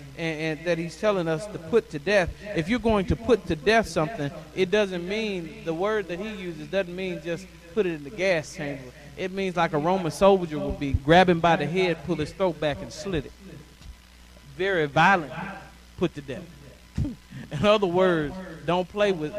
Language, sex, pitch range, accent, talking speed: English, male, 155-195 Hz, American, 200 wpm